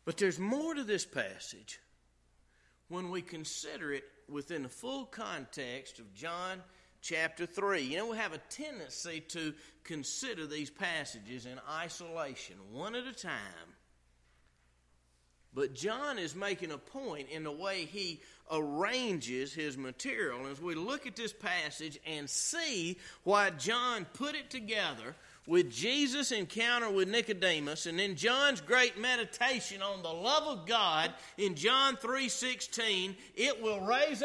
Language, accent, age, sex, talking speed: English, American, 40-59, male, 140 wpm